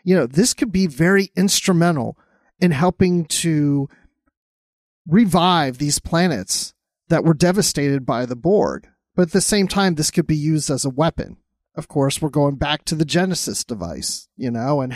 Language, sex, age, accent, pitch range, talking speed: English, male, 40-59, American, 145-185 Hz, 175 wpm